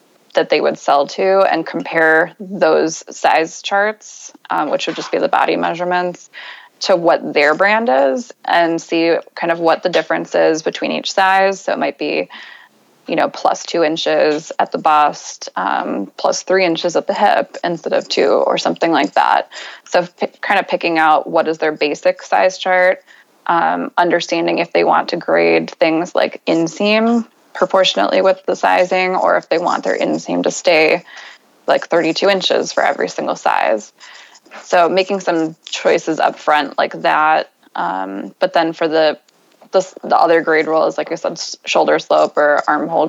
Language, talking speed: English, 175 wpm